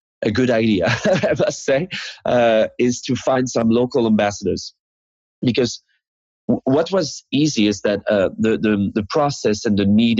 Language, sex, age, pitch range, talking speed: Spanish, male, 30-49, 100-120 Hz, 165 wpm